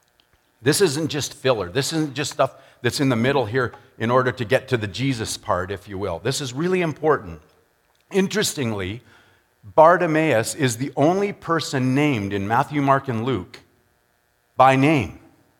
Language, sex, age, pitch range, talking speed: English, male, 50-69, 115-150 Hz, 160 wpm